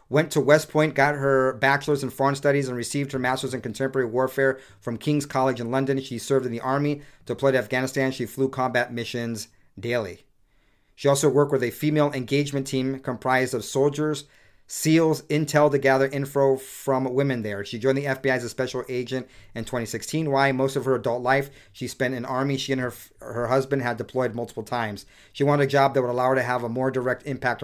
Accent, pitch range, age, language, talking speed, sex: American, 120-135 Hz, 40-59, English, 215 wpm, male